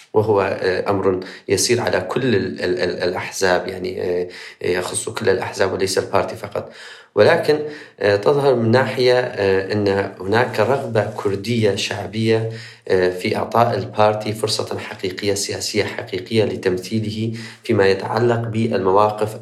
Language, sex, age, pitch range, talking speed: Arabic, male, 30-49, 95-110 Hz, 100 wpm